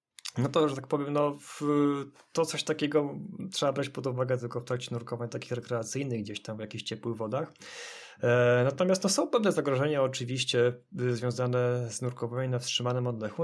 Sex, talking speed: male, 175 wpm